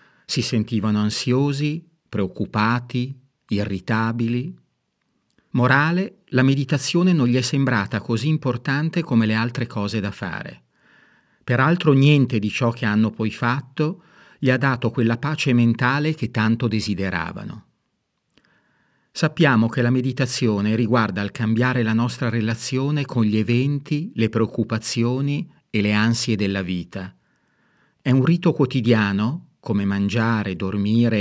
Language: Italian